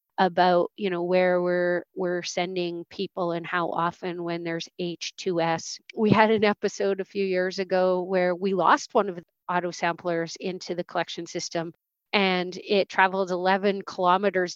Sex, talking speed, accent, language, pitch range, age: female, 160 wpm, American, English, 175-190 Hz, 40-59